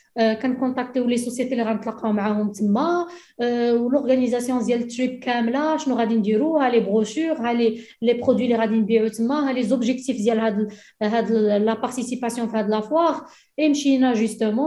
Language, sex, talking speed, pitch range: Arabic, female, 65 wpm, 225-260 Hz